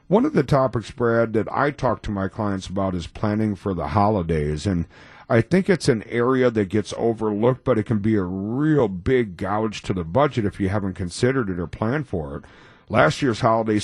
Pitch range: 95-120 Hz